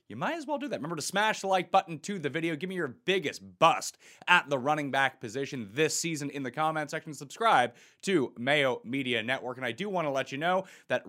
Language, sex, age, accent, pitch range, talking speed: English, male, 30-49, American, 135-180 Hz, 245 wpm